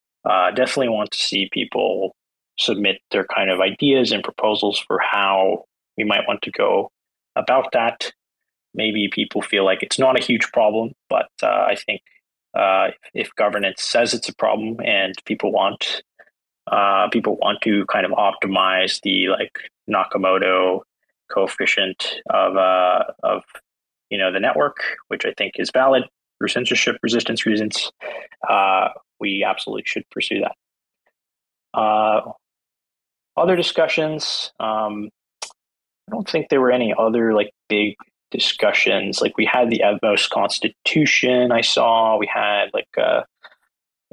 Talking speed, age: 140 wpm, 20-39